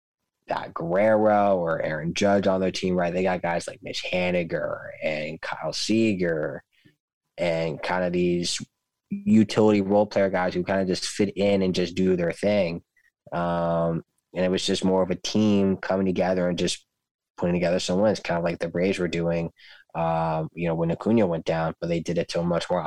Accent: American